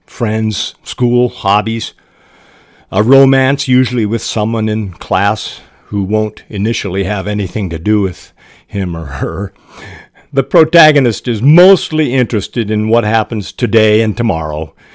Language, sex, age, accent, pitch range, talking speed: English, male, 50-69, American, 95-125 Hz, 130 wpm